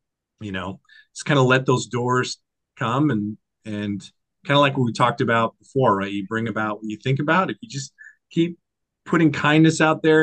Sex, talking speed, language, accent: male, 205 wpm, English, American